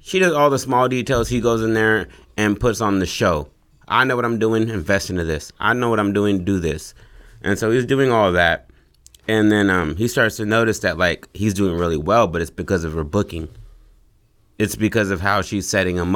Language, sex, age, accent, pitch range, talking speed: English, male, 30-49, American, 85-105 Hz, 235 wpm